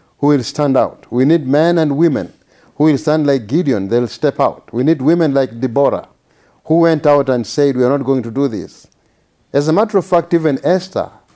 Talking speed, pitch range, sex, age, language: 215 wpm, 135-165 Hz, male, 50-69, English